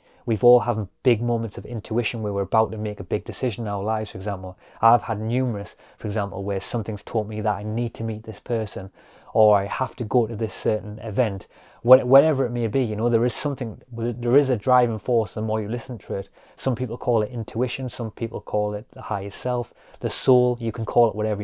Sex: male